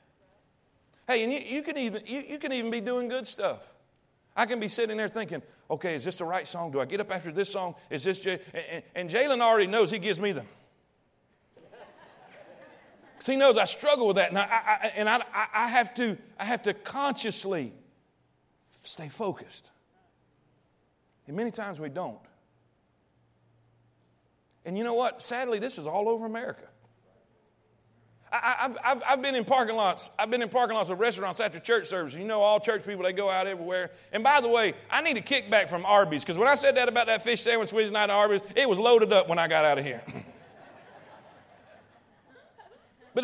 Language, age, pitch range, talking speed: English, 40-59, 195-265 Hz, 195 wpm